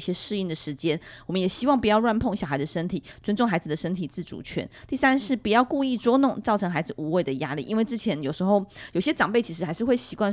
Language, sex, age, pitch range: Chinese, female, 20-39, 170-235 Hz